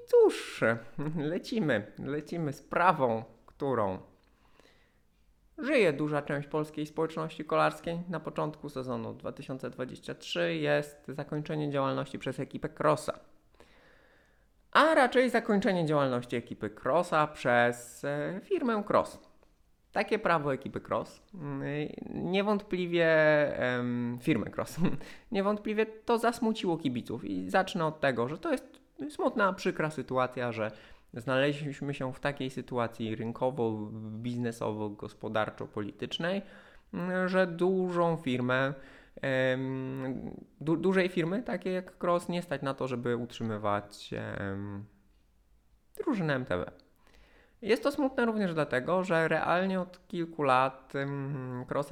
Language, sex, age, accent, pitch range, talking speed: Polish, male, 20-39, native, 125-180 Hz, 105 wpm